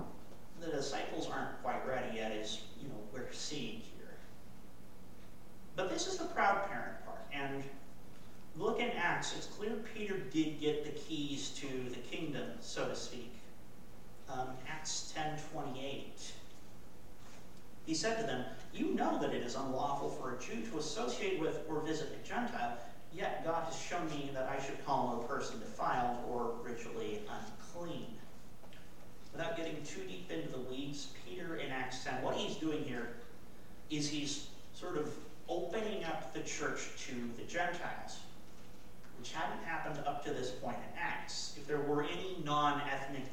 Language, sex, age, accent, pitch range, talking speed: English, male, 40-59, American, 120-155 Hz, 160 wpm